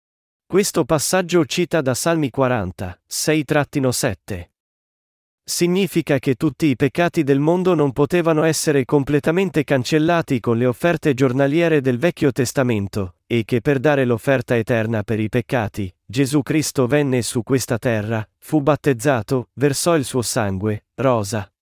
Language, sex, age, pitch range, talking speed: Italian, male, 40-59, 120-165 Hz, 135 wpm